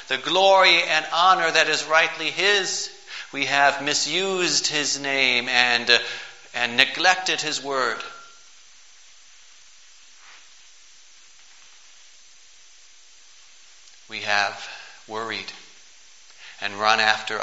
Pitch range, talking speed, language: 110-160 Hz, 85 wpm, English